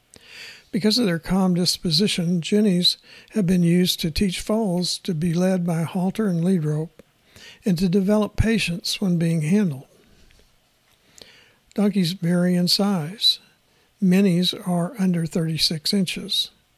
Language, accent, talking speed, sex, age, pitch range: English, American, 130 wpm, male, 60-79, 165-200 Hz